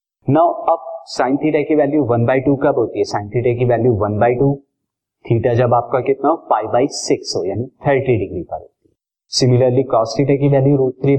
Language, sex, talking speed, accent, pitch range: Hindi, male, 80 wpm, native, 110-145 Hz